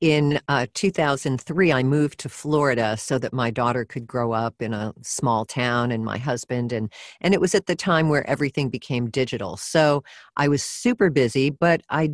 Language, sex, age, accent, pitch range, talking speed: English, female, 50-69, American, 130-160 Hz, 195 wpm